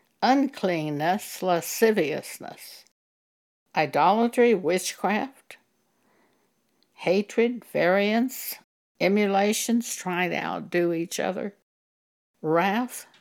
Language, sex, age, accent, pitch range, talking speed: English, female, 60-79, American, 170-220 Hz, 60 wpm